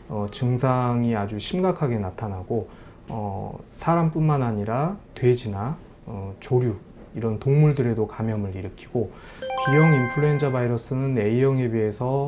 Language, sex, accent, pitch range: Korean, male, native, 110-140 Hz